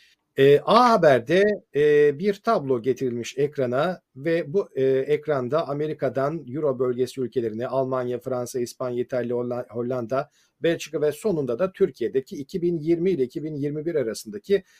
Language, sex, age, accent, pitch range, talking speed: Turkish, male, 50-69, native, 130-180 Hz, 120 wpm